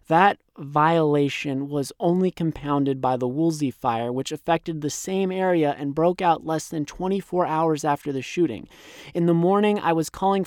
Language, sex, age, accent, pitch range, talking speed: English, male, 30-49, American, 135-170 Hz, 170 wpm